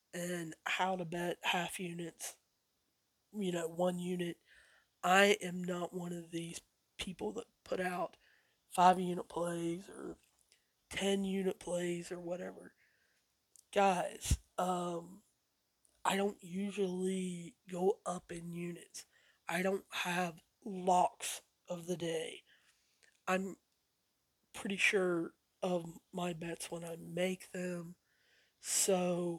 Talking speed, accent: 115 wpm, American